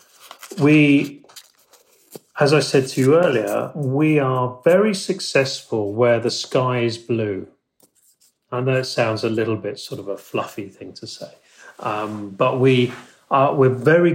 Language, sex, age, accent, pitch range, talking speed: English, male, 40-59, British, 110-135 Hz, 155 wpm